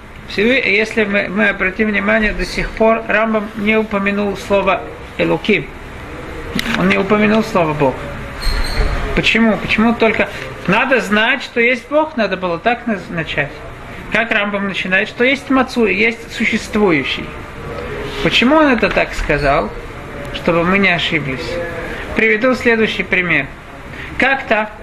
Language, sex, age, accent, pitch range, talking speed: Russian, male, 40-59, native, 180-230 Hz, 125 wpm